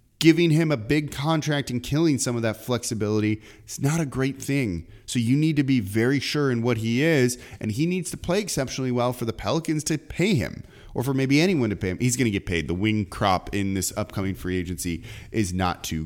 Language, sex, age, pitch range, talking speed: English, male, 30-49, 110-140 Hz, 235 wpm